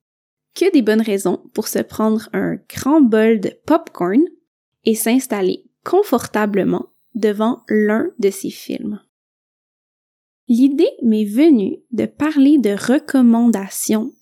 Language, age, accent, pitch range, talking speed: French, 20-39, Canadian, 215-300 Hz, 115 wpm